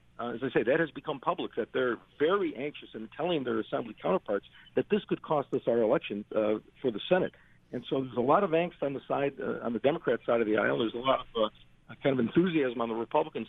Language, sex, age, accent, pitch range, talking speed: English, male, 50-69, American, 110-150 Hz, 255 wpm